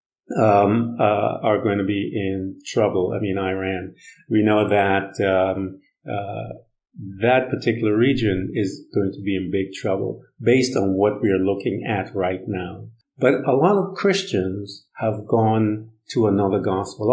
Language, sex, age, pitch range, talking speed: English, male, 50-69, 100-135 Hz, 160 wpm